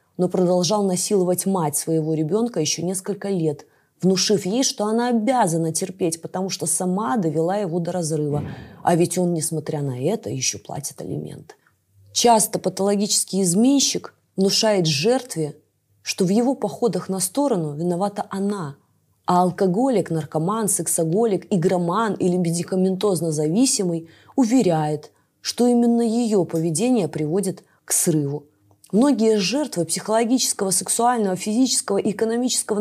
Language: Russian